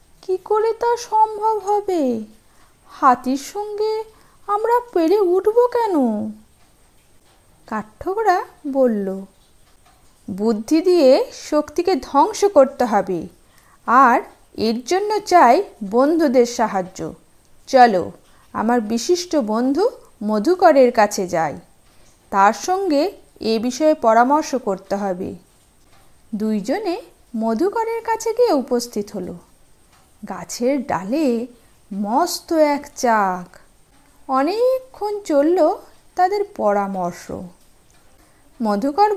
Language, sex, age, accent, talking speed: Bengali, female, 50-69, native, 85 wpm